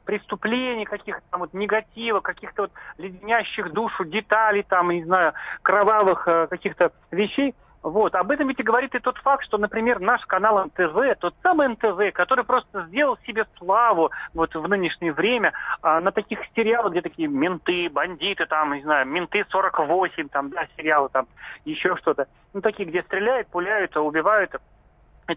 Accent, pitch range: native, 175-235 Hz